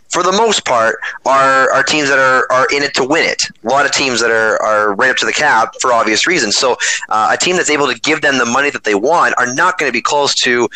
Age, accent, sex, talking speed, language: 30-49, American, male, 285 wpm, English